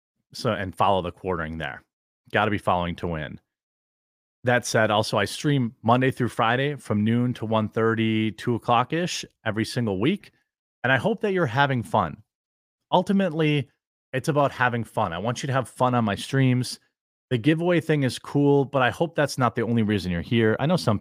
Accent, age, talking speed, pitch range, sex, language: American, 30-49, 195 wpm, 100-130 Hz, male, English